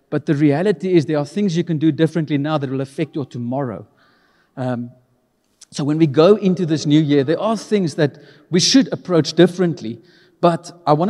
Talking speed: 200 wpm